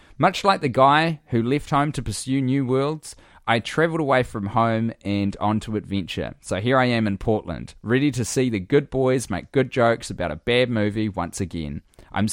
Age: 20-39